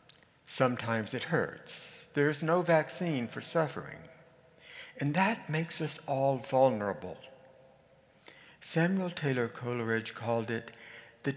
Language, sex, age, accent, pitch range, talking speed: English, male, 60-79, American, 120-165 Hz, 110 wpm